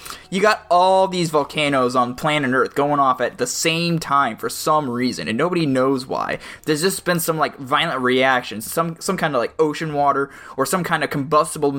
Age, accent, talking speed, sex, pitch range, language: 20-39, American, 205 wpm, male, 135-170 Hz, English